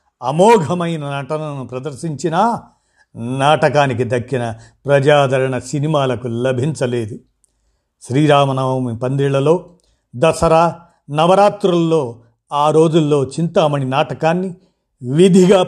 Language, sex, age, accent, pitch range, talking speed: Telugu, male, 50-69, native, 125-165 Hz, 65 wpm